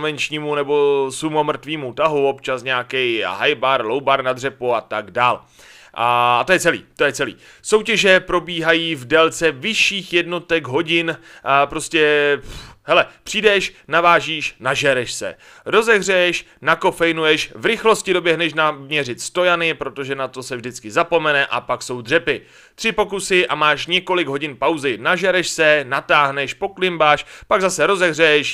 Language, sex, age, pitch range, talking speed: Czech, male, 30-49, 140-180 Hz, 145 wpm